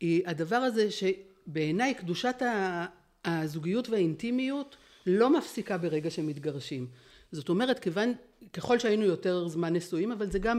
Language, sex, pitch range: Hebrew, female, 165-215 Hz